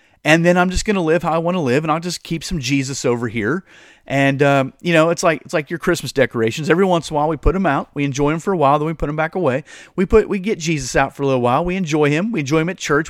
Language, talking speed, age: English, 320 wpm, 30-49